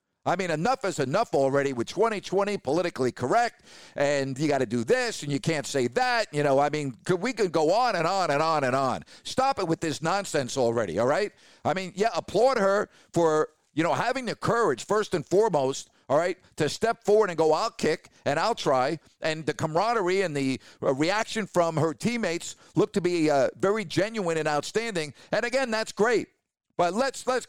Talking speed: 205 wpm